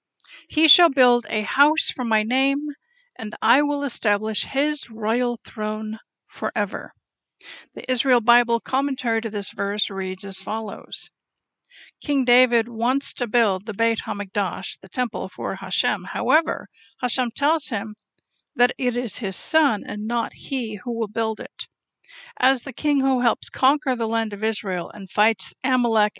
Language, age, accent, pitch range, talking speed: English, 50-69, American, 210-260 Hz, 155 wpm